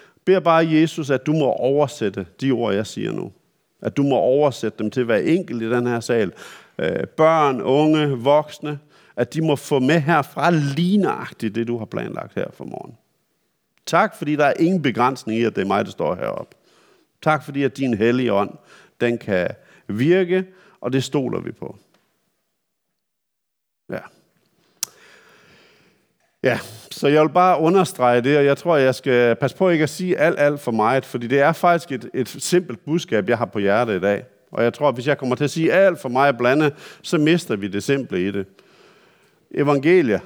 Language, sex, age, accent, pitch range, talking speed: Danish, male, 50-69, native, 120-155 Hz, 190 wpm